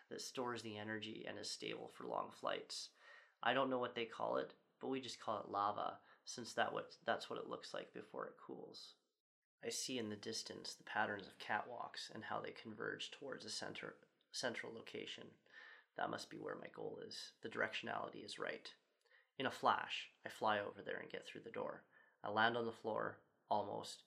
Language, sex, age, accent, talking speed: English, male, 20-39, American, 195 wpm